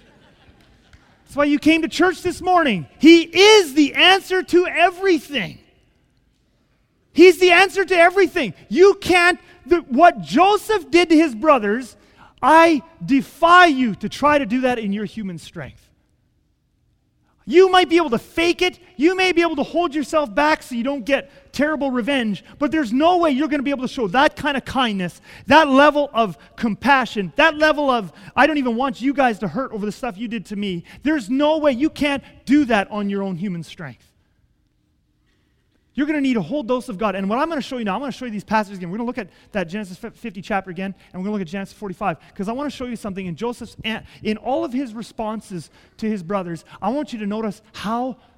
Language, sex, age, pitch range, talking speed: English, male, 30-49, 210-315 Hz, 215 wpm